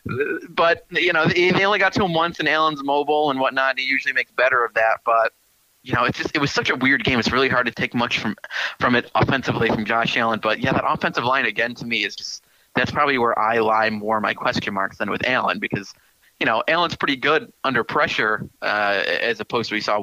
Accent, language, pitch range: American, English, 115-150 Hz